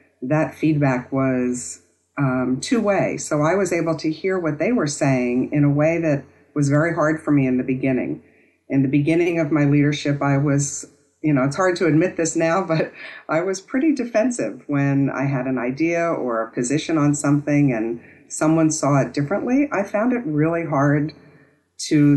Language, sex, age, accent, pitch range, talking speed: English, female, 50-69, American, 135-160 Hz, 185 wpm